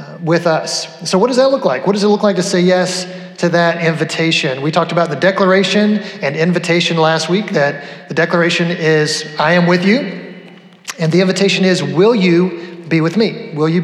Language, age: English, 30-49